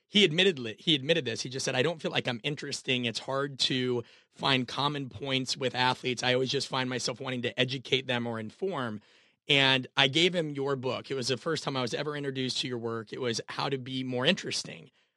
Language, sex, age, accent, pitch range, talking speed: English, male, 30-49, American, 125-150 Hz, 230 wpm